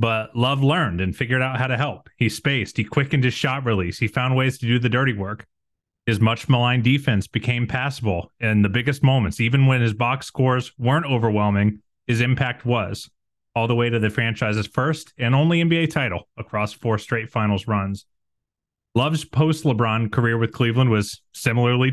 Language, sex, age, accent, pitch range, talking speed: English, male, 30-49, American, 110-135 Hz, 185 wpm